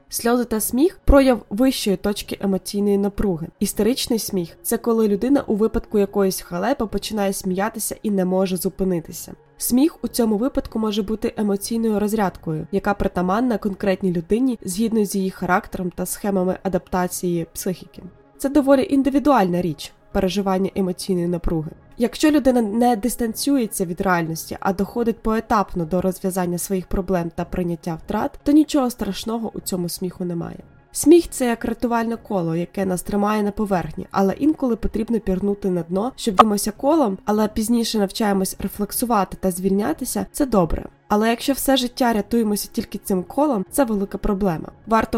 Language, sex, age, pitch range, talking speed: Ukrainian, female, 20-39, 190-230 Hz, 155 wpm